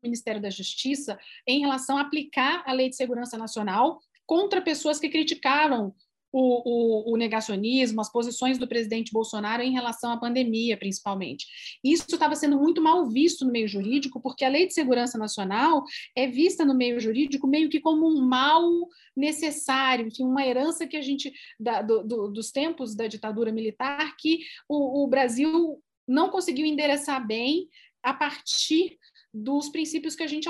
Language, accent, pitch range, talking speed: Portuguese, Brazilian, 230-305 Hz, 165 wpm